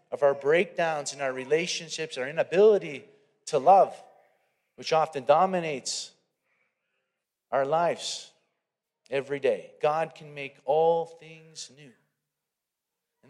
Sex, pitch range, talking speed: male, 140-180 Hz, 110 wpm